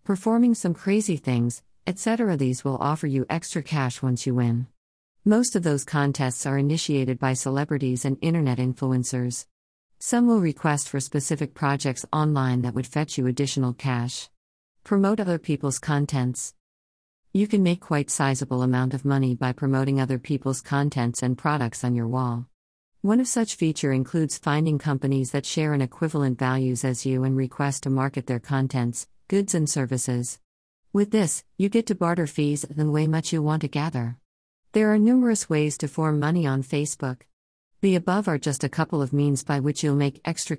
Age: 50-69